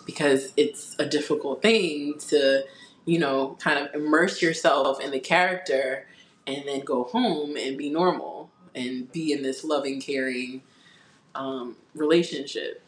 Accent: American